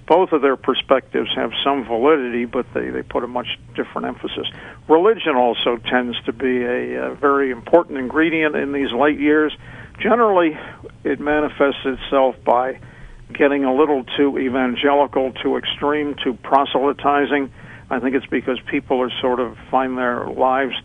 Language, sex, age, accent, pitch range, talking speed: English, male, 60-79, American, 125-140 Hz, 155 wpm